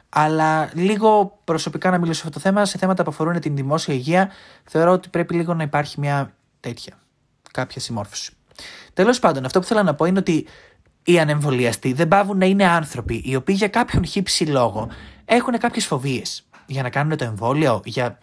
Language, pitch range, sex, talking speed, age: Greek, 125-175 Hz, male, 190 wpm, 20-39